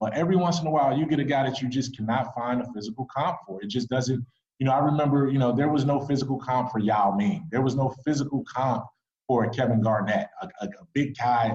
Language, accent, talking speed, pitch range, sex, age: English, American, 255 wpm, 115-140 Hz, male, 20-39